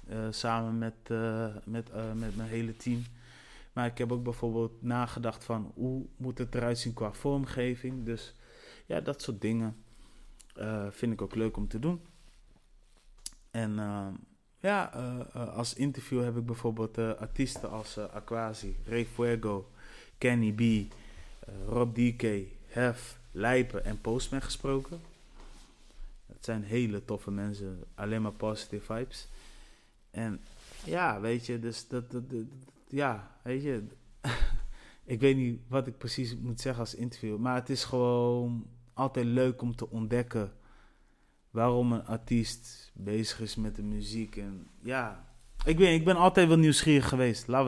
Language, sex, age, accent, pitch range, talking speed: Dutch, male, 20-39, Dutch, 110-125 Hz, 150 wpm